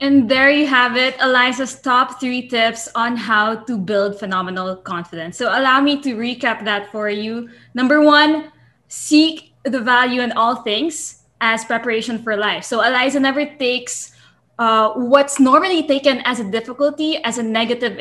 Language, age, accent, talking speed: English, 20-39, Filipino, 165 wpm